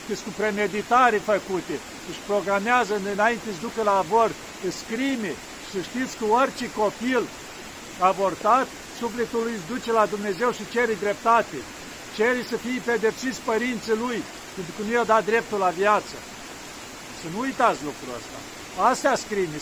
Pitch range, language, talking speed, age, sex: 200-235 Hz, Romanian, 145 wpm, 50-69, male